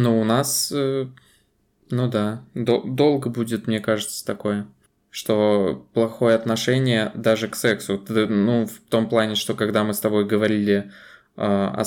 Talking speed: 135 wpm